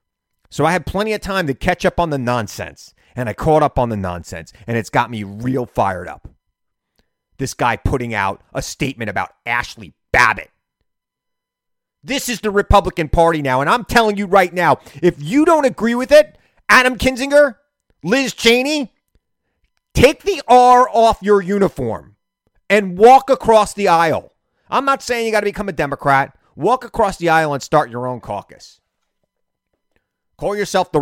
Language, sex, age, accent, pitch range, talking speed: English, male, 30-49, American, 135-210 Hz, 170 wpm